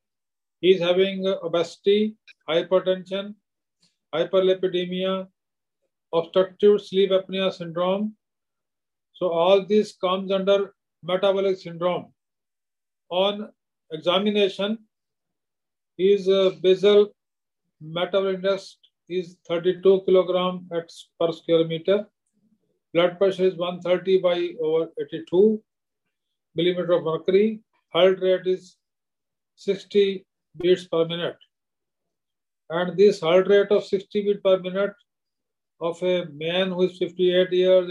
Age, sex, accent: 40-59, male, Indian